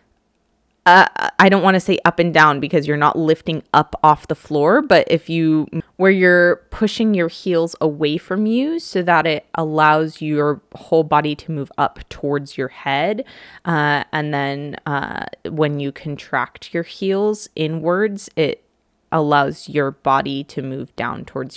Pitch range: 150-215 Hz